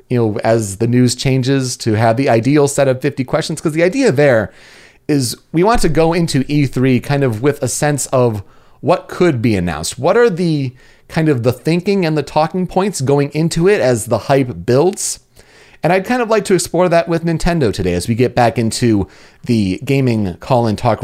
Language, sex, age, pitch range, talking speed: English, male, 30-49, 110-155 Hz, 205 wpm